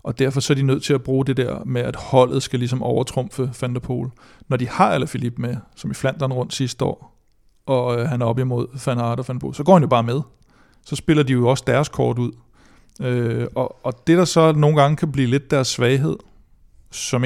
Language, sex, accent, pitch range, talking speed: Danish, male, native, 120-140 Hz, 220 wpm